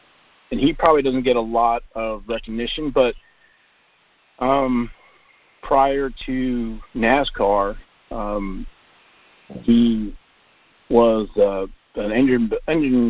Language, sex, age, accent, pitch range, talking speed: English, male, 50-69, American, 105-125 Hz, 95 wpm